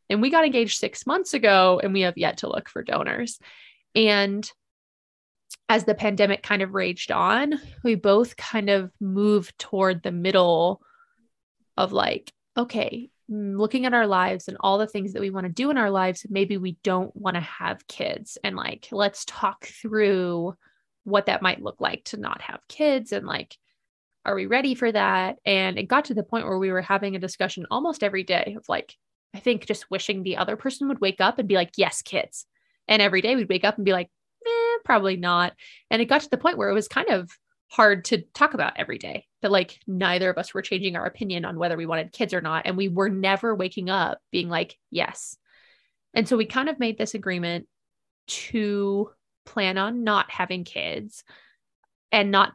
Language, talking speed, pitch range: English, 205 wpm, 185-230 Hz